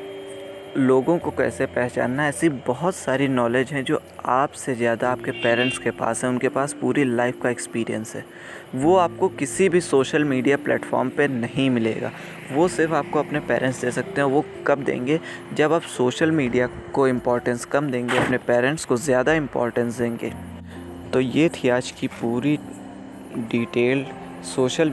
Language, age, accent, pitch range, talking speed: Hindi, 20-39, native, 120-140 Hz, 160 wpm